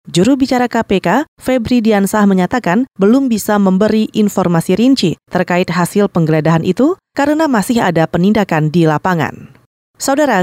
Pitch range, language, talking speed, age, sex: 185-240 Hz, Indonesian, 125 wpm, 30-49, female